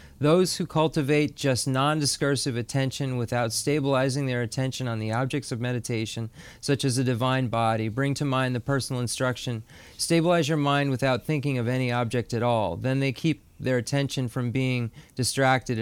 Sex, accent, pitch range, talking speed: male, American, 115-145 Hz, 165 wpm